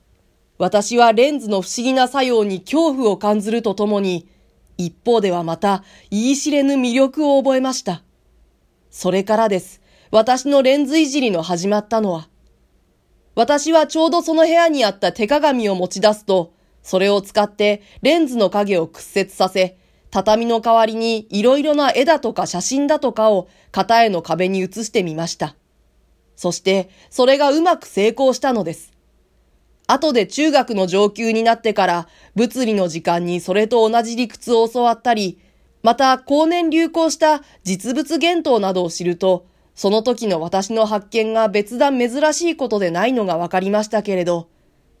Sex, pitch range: female, 190-250 Hz